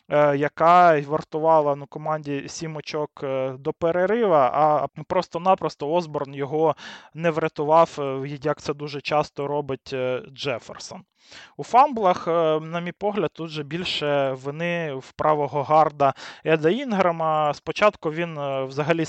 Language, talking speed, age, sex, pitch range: Ukrainian, 115 wpm, 20-39, male, 145-170 Hz